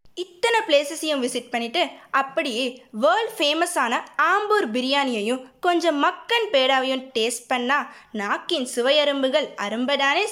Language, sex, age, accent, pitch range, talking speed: Tamil, female, 20-39, native, 250-345 Hz, 105 wpm